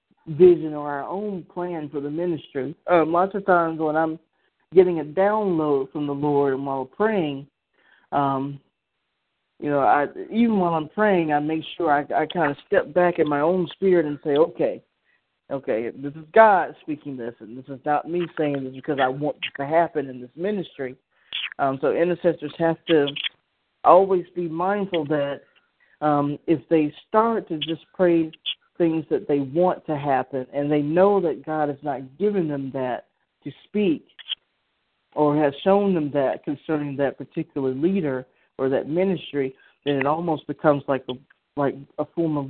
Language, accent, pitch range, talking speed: English, American, 140-170 Hz, 175 wpm